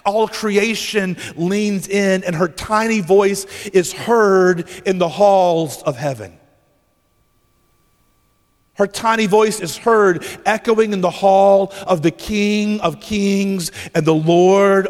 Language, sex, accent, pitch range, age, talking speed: English, male, American, 115-185 Hz, 40-59, 130 wpm